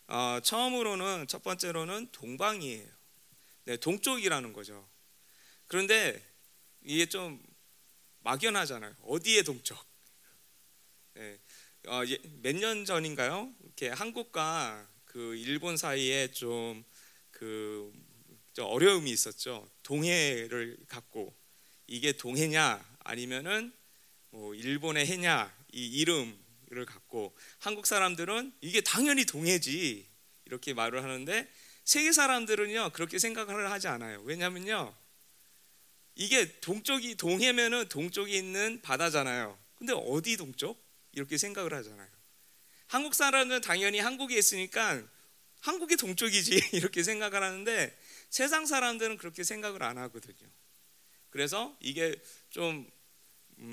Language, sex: Korean, male